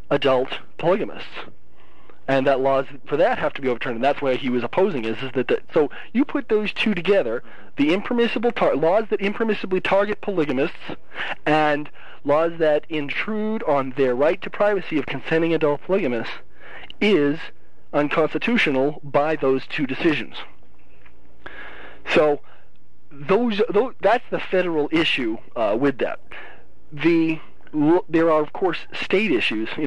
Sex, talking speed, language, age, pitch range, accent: male, 145 wpm, English, 40-59, 135-185 Hz, American